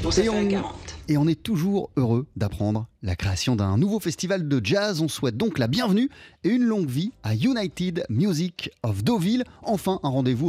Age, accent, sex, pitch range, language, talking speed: 30-49, French, male, 130-205 Hz, French, 185 wpm